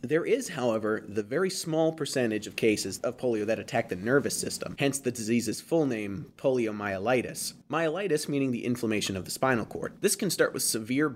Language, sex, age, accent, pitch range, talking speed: English, male, 20-39, American, 105-130 Hz, 190 wpm